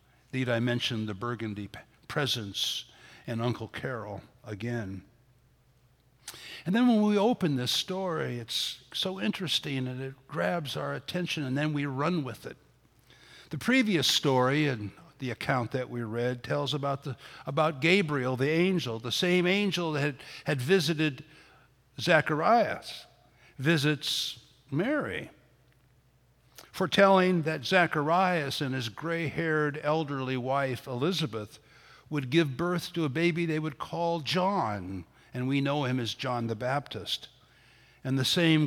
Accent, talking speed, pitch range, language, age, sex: American, 130 wpm, 125-160 Hz, English, 60-79, male